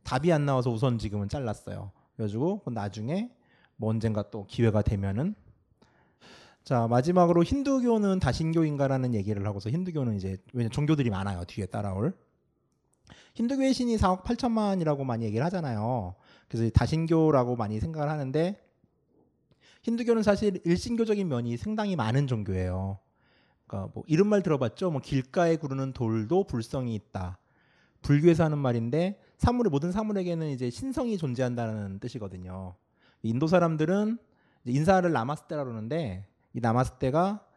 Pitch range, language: 110-170 Hz, Korean